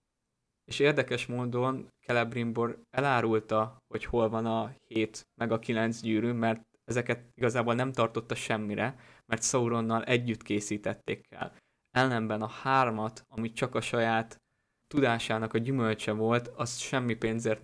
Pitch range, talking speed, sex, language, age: 110-120 Hz, 135 wpm, male, Hungarian, 20-39